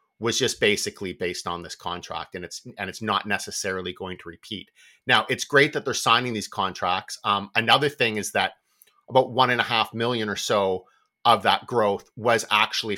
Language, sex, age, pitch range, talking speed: English, male, 30-49, 95-115 Hz, 190 wpm